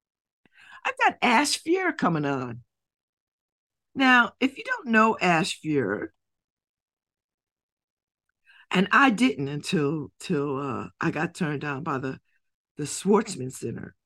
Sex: female